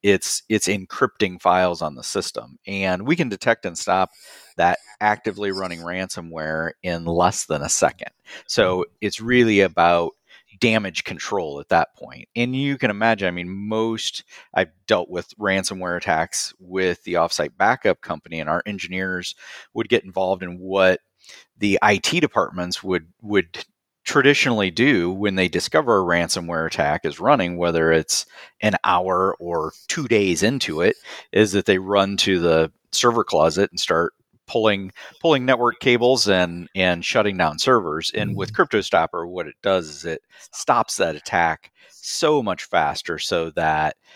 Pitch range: 85-105 Hz